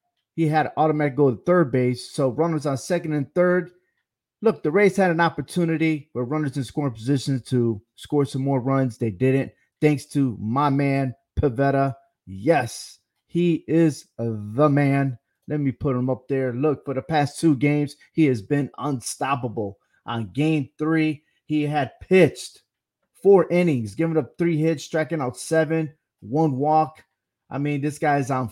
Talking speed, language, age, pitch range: 170 wpm, English, 30-49, 130-160 Hz